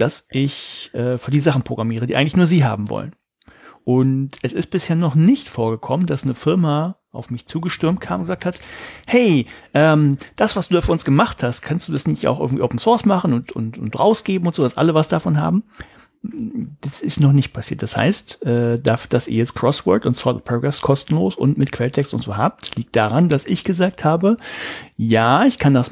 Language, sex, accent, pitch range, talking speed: German, male, German, 120-165 Hz, 215 wpm